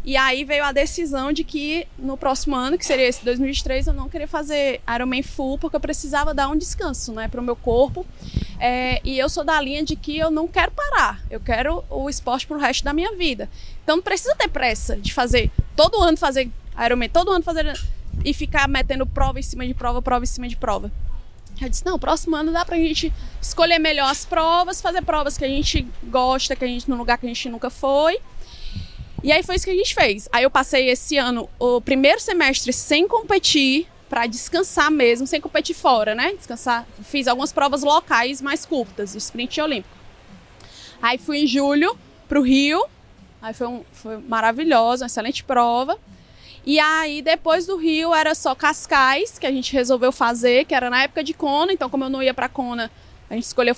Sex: female